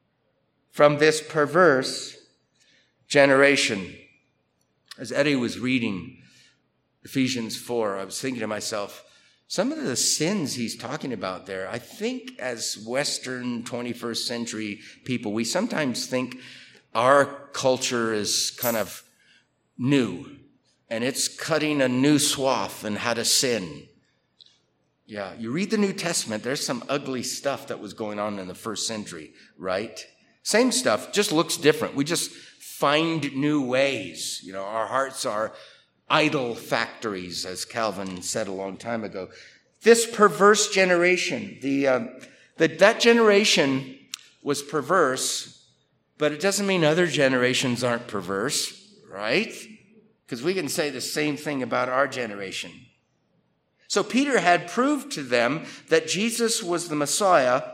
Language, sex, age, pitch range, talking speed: English, male, 50-69, 115-175 Hz, 135 wpm